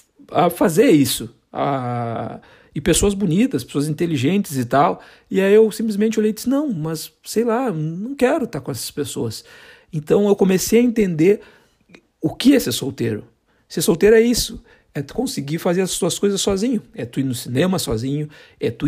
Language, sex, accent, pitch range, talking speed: Portuguese, male, Brazilian, 140-205 Hz, 185 wpm